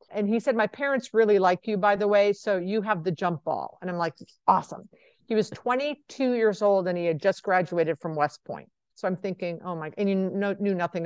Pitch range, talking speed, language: 180-220 Hz, 235 wpm, English